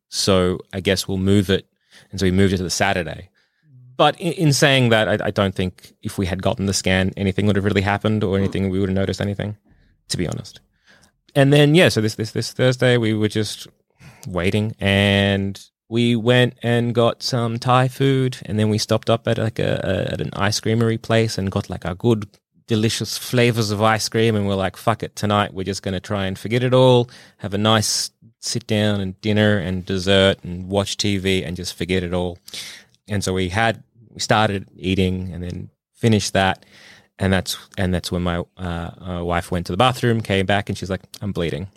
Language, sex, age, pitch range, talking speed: English, male, 20-39, 95-115 Hz, 215 wpm